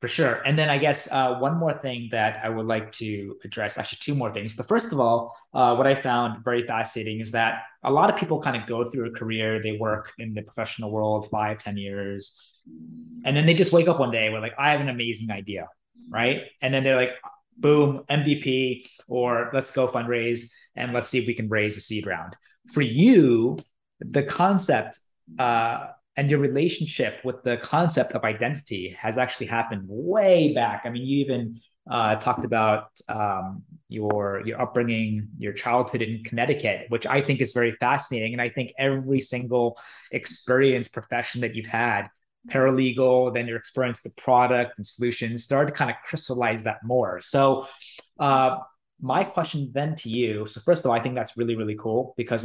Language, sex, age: English, male, 20-39